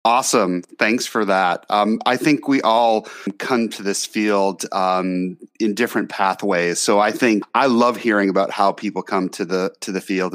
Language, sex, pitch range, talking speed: English, male, 100-120 Hz, 185 wpm